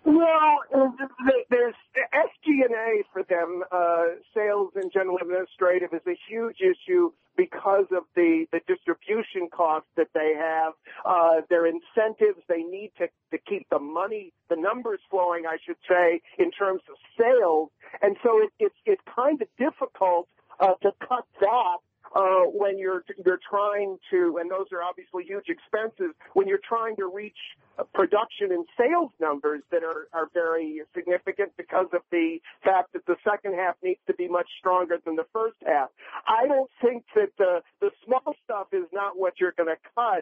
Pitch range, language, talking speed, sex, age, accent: 175-260 Hz, English, 175 wpm, male, 50-69, American